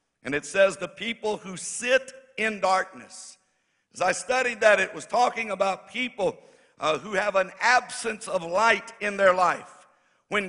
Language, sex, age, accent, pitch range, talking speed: English, male, 60-79, American, 180-230 Hz, 165 wpm